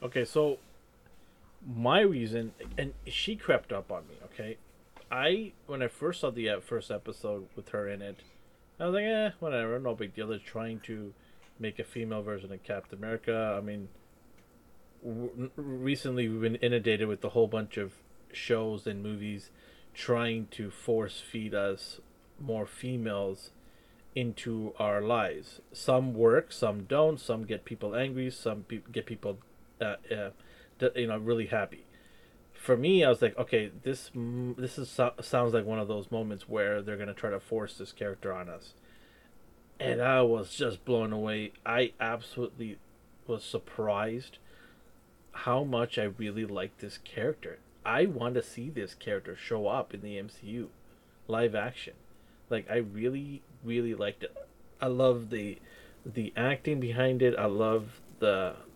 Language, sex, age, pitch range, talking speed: English, male, 30-49, 105-125 Hz, 160 wpm